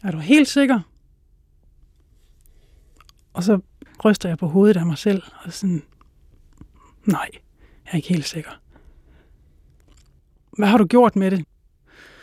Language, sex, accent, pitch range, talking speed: Danish, male, native, 170-225 Hz, 130 wpm